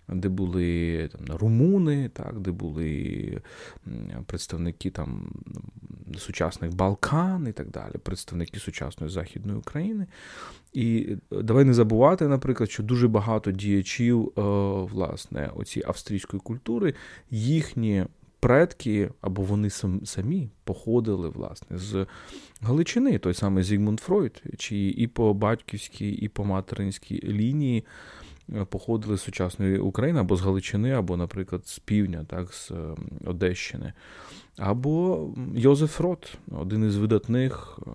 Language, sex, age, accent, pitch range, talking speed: Ukrainian, male, 30-49, native, 95-125 Hz, 110 wpm